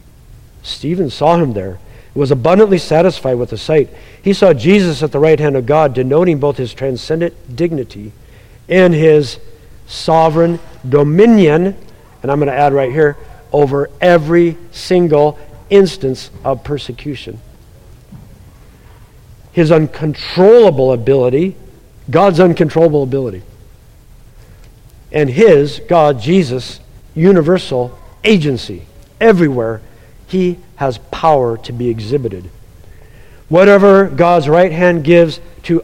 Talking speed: 110 wpm